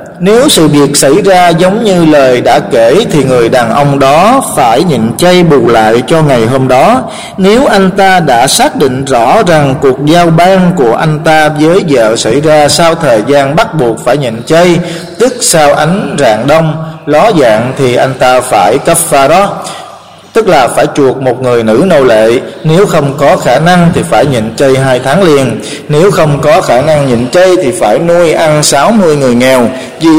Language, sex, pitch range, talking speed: Vietnamese, male, 135-175 Hz, 200 wpm